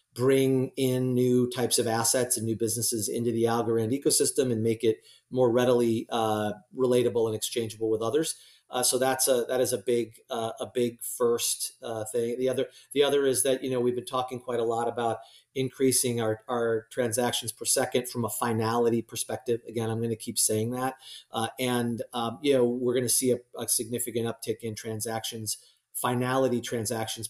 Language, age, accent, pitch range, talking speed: English, 40-59, American, 115-125 Hz, 190 wpm